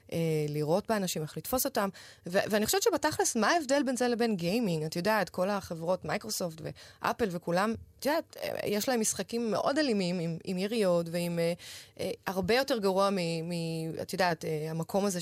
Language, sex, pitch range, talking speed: Hebrew, female, 170-215 Hz, 160 wpm